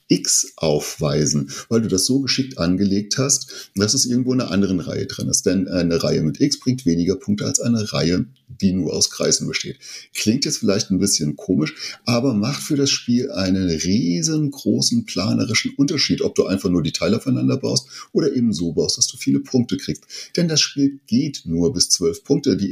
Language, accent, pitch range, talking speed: German, German, 90-125 Hz, 200 wpm